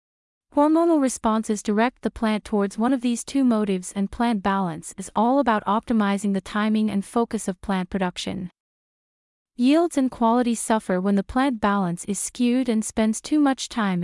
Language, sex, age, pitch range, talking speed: English, female, 30-49, 200-240 Hz, 170 wpm